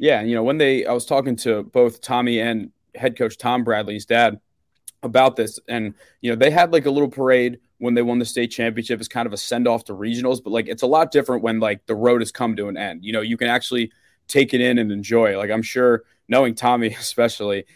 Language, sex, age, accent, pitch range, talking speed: English, male, 20-39, American, 110-125 Hz, 245 wpm